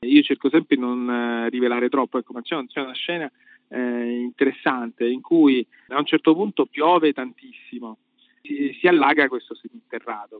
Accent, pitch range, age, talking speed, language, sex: native, 125-210 Hz, 40-59, 165 wpm, Italian, male